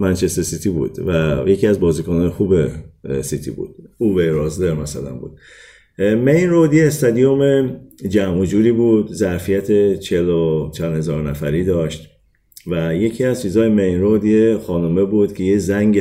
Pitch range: 80-105 Hz